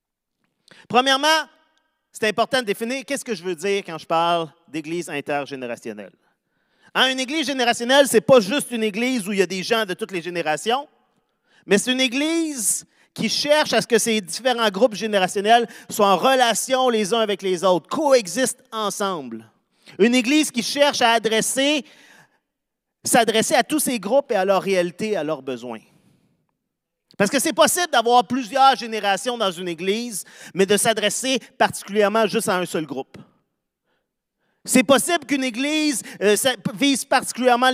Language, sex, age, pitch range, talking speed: French, male, 40-59, 195-255 Hz, 160 wpm